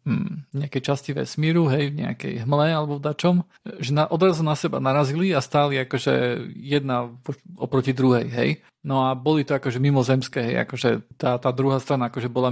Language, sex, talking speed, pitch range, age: Slovak, male, 180 wpm, 130-150 Hz, 40-59